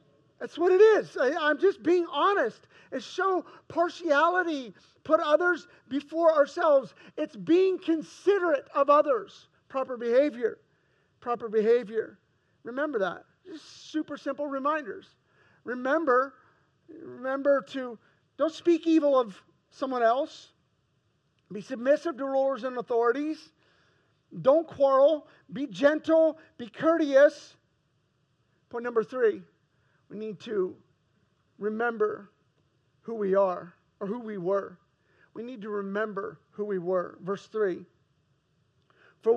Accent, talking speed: American, 115 wpm